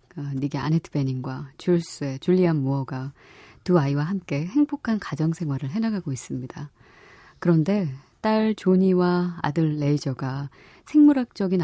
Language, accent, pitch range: Korean, native, 140-195 Hz